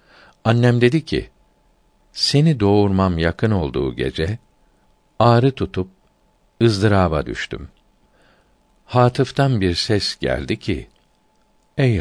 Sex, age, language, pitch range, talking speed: male, 60-79, Turkish, 85-110 Hz, 90 wpm